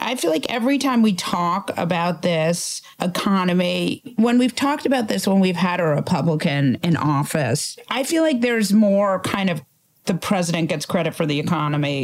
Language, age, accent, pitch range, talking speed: English, 40-59, American, 165-210 Hz, 180 wpm